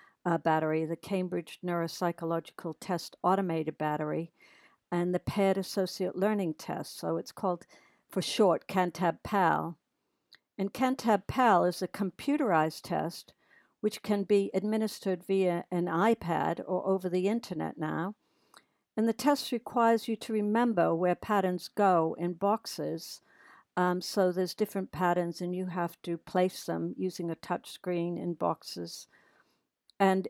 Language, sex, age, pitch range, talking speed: English, female, 60-79, 170-205 Hz, 135 wpm